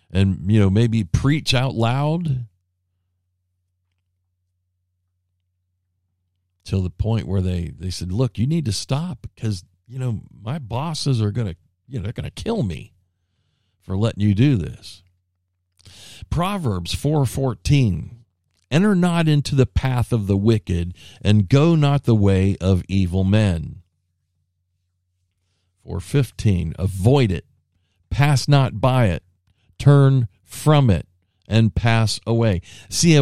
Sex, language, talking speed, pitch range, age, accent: male, English, 130 wpm, 90-120 Hz, 50-69, American